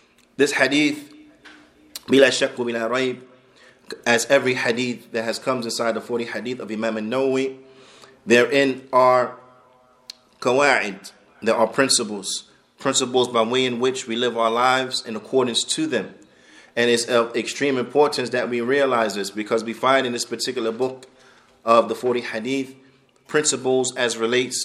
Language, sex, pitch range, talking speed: English, male, 120-130 Hz, 150 wpm